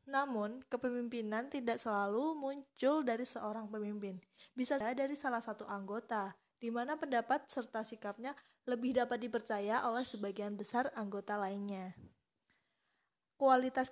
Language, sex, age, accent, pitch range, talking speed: Indonesian, female, 20-39, native, 210-250 Hz, 120 wpm